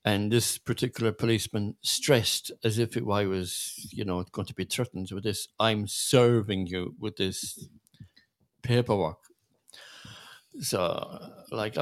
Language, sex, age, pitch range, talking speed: English, male, 50-69, 100-120 Hz, 125 wpm